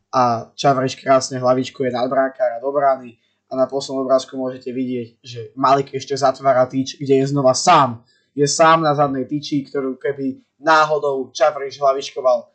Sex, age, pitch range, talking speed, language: male, 20-39, 125-150 Hz, 155 wpm, Slovak